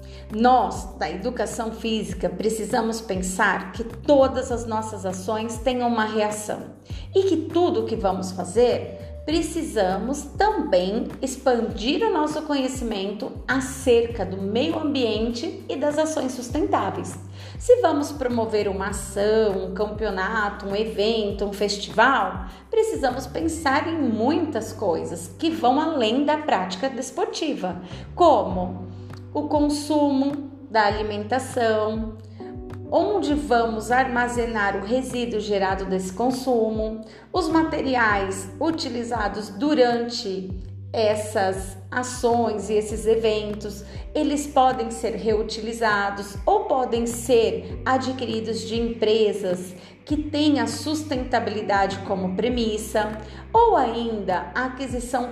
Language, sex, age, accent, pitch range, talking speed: Portuguese, female, 30-49, Brazilian, 205-270 Hz, 105 wpm